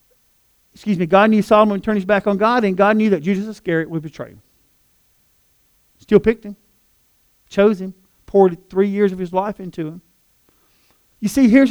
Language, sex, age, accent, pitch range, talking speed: English, male, 50-69, American, 180-245 Hz, 185 wpm